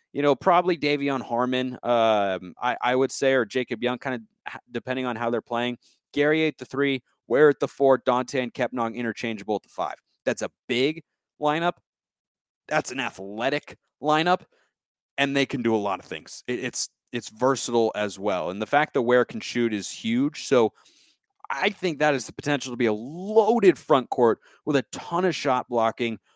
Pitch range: 115-140 Hz